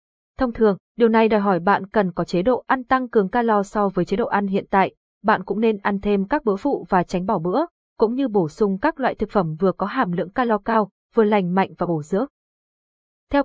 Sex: female